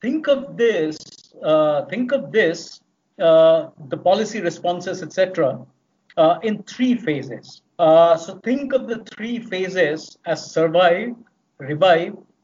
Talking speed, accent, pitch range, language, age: 130 wpm, Indian, 155-190 Hz, English, 50-69